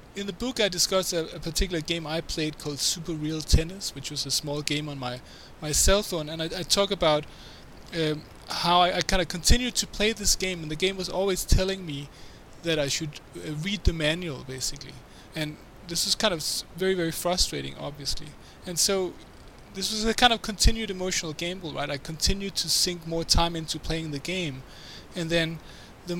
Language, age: English, 20-39